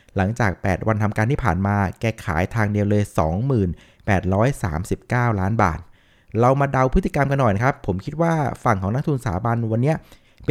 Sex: male